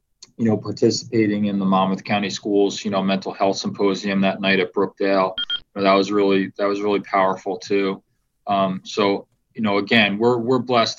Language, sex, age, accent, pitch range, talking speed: English, male, 20-39, American, 95-110 Hz, 190 wpm